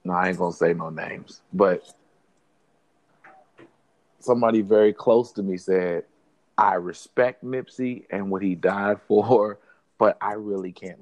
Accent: American